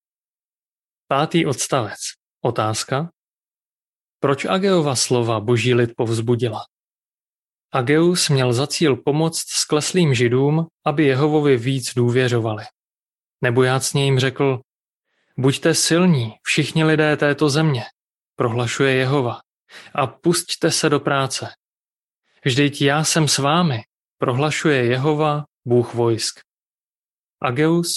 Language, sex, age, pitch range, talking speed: Czech, male, 30-49, 125-155 Hz, 100 wpm